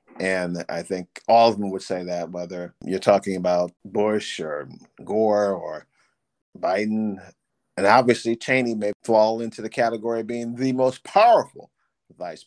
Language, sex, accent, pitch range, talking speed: English, male, American, 100-130 Hz, 155 wpm